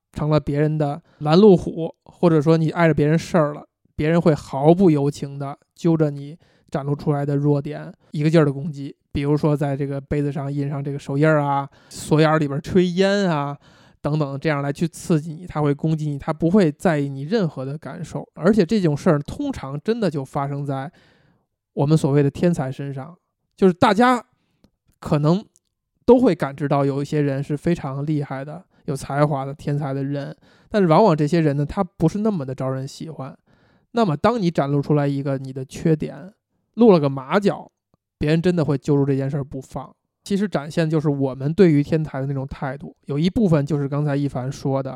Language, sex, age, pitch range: Chinese, male, 20-39, 140-170 Hz